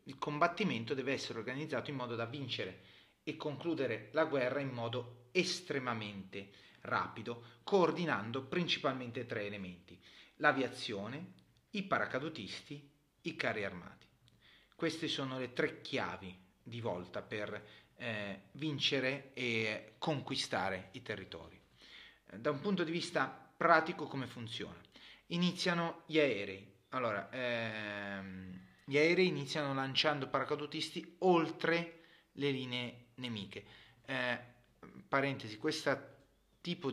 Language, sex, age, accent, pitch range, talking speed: Italian, male, 30-49, native, 105-145 Hz, 110 wpm